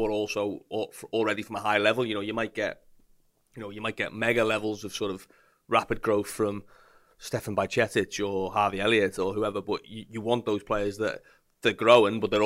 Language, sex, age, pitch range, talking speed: English, male, 30-49, 100-110 Hz, 205 wpm